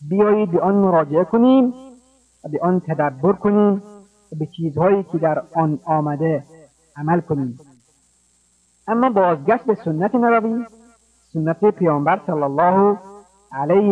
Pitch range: 155-205 Hz